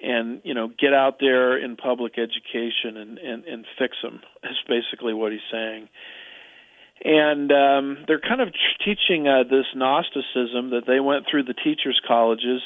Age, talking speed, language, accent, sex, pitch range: 40-59, 170 wpm, English, American, male, 120-135 Hz